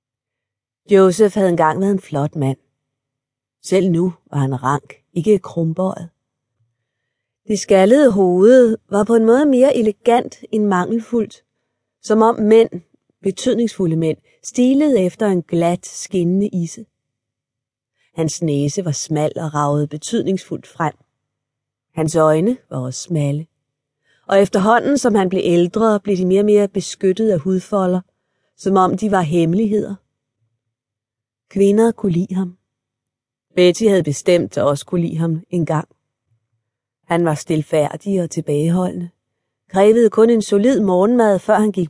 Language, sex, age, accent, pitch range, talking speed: Danish, female, 30-49, native, 145-200 Hz, 135 wpm